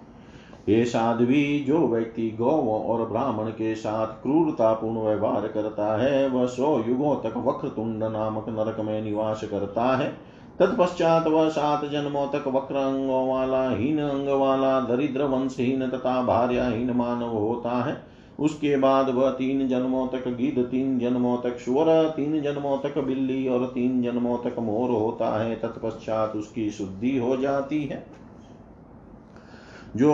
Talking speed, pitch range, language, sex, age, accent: 135 wpm, 115-135 Hz, Hindi, male, 40-59, native